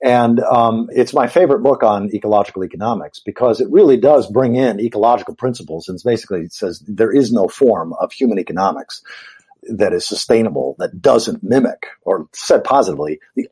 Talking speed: 165 wpm